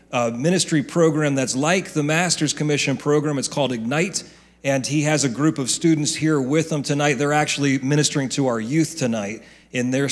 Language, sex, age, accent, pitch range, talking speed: English, male, 40-59, American, 135-170 Hz, 190 wpm